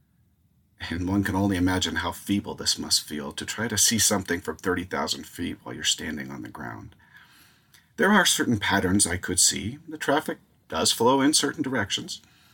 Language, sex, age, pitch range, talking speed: English, male, 40-59, 90-110 Hz, 180 wpm